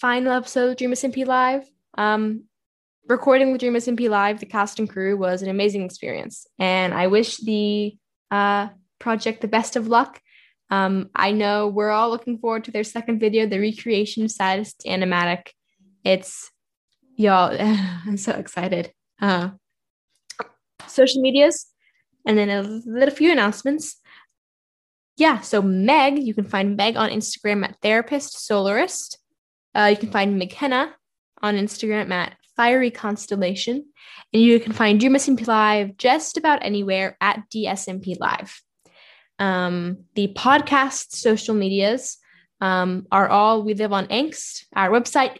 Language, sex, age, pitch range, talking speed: English, female, 10-29, 200-255 Hz, 145 wpm